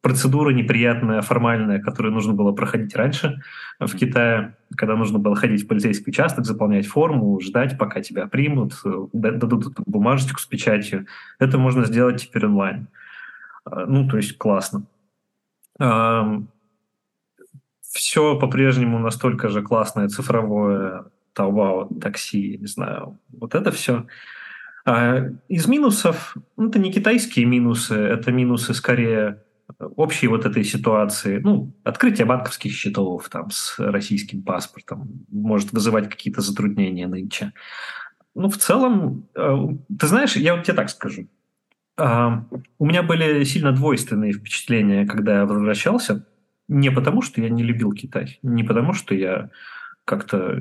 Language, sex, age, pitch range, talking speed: Russian, male, 20-39, 105-140 Hz, 125 wpm